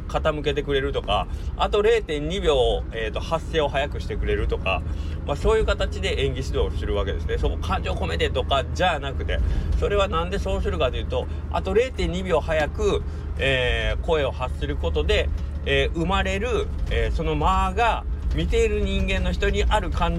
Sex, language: male, Japanese